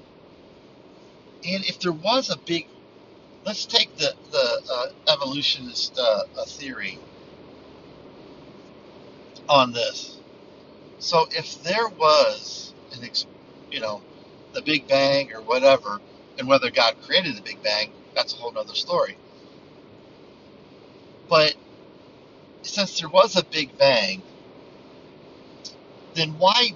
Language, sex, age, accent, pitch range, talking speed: English, male, 50-69, American, 150-210 Hz, 115 wpm